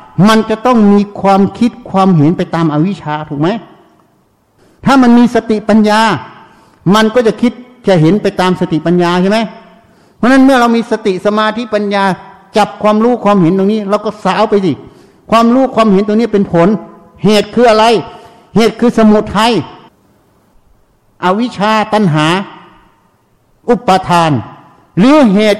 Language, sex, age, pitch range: Thai, male, 60-79, 180-230 Hz